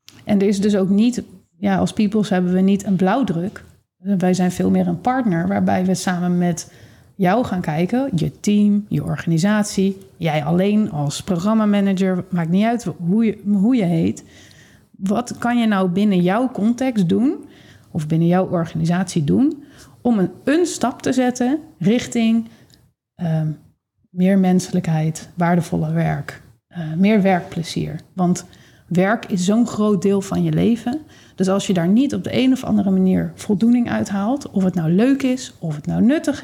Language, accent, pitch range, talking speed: Dutch, Dutch, 180-220 Hz, 165 wpm